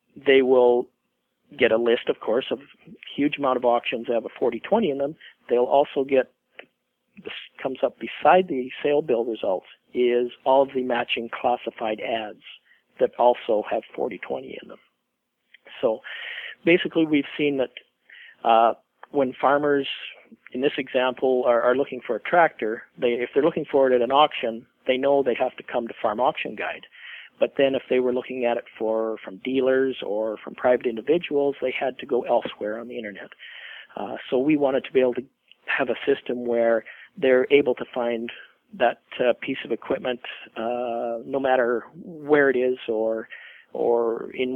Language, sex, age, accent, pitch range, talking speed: English, male, 50-69, American, 120-140 Hz, 175 wpm